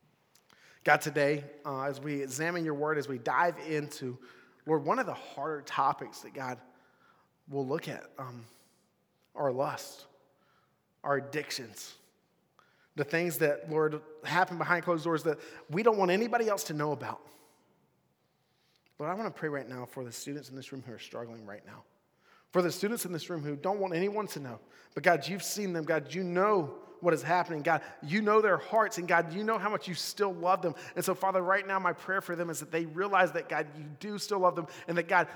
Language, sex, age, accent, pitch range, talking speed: English, male, 30-49, American, 145-185 Hz, 210 wpm